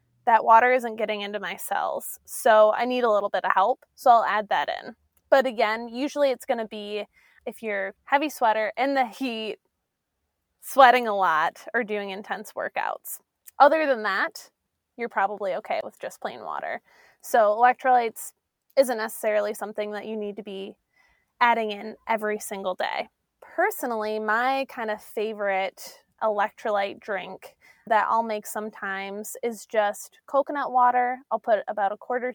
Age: 20-39